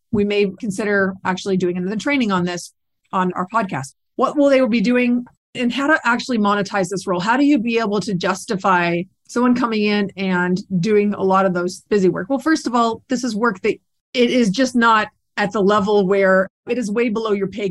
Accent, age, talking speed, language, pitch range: American, 30-49, 215 wpm, English, 195-235 Hz